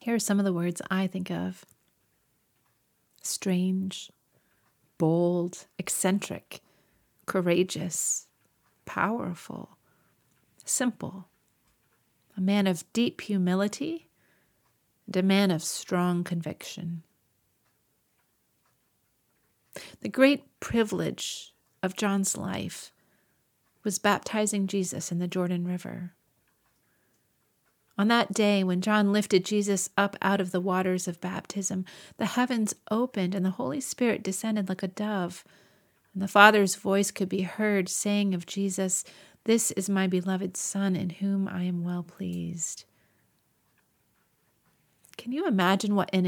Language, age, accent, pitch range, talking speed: English, 40-59, American, 180-205 Hz, 115 wpm